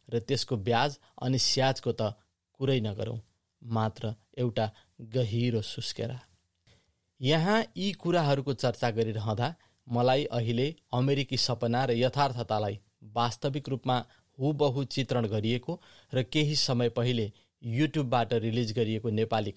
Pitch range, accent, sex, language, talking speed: 115-140 Hz, Indian, male, English, 125 wpm